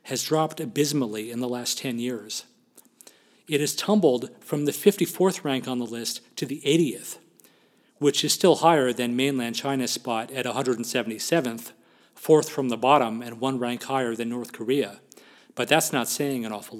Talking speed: 170 wpm